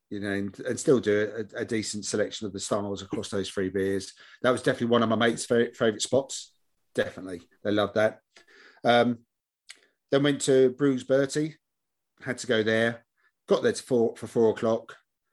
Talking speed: 180 wpm